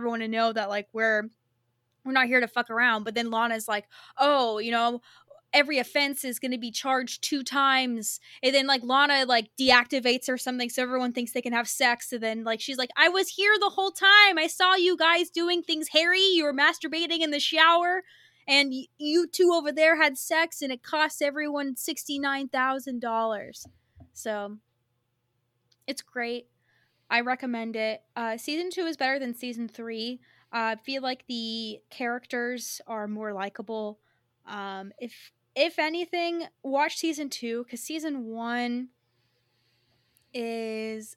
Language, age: English, 20-39